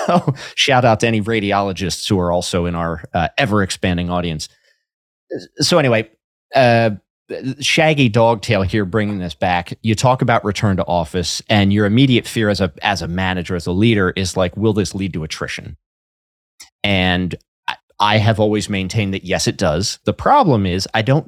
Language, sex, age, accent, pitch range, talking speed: English, male, 30-49, American, 95-115 Hz, 180 wpm